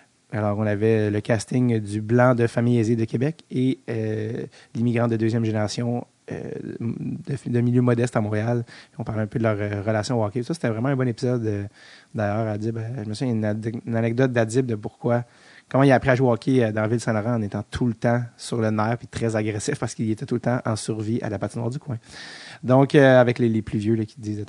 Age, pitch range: 30-49, 115-135 Hz